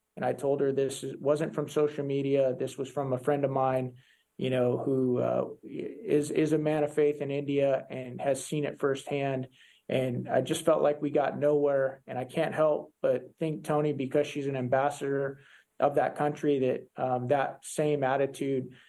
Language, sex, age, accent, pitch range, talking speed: English, male, 40-59, American, 135-155 Hz, 190 wpm